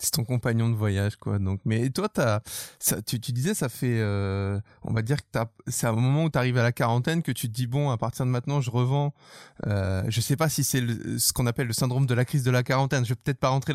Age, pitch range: 20-39, 115-145 Hz